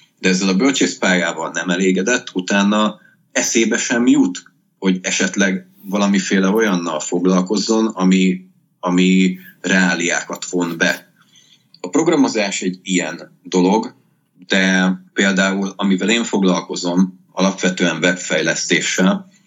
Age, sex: 30-49, male